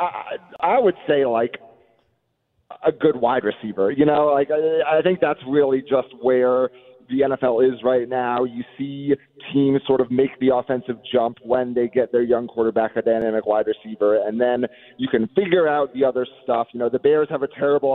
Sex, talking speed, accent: male, 190 wpm, American